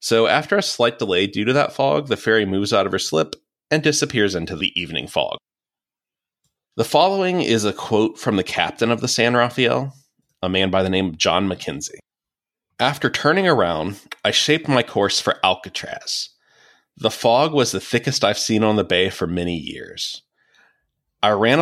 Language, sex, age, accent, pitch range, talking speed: English, male, 30-49, American, 95-125 Hz, 185 wpm